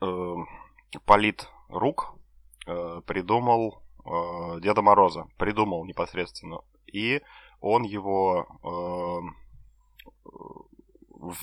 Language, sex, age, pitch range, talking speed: Ukrainian, male, 30-49, 85-100 Hz, 60 wpm